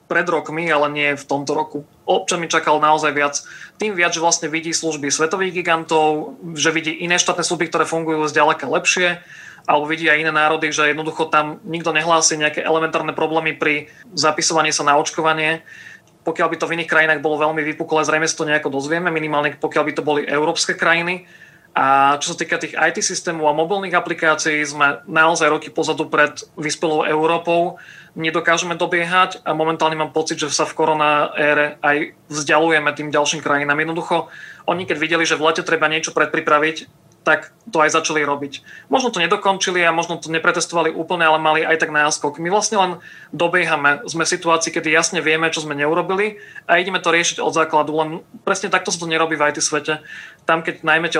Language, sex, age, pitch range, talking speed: Slovak, male, 30-49, 155-170 Hz, 185 wpm